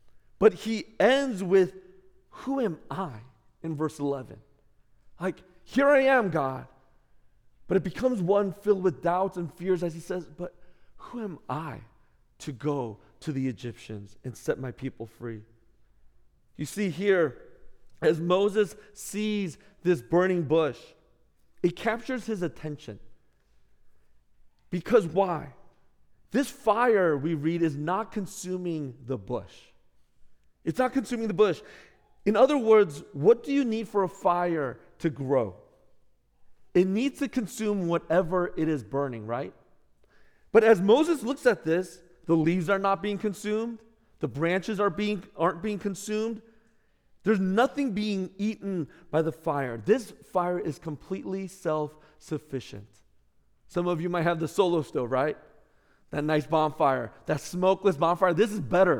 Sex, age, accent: male, 40-59, American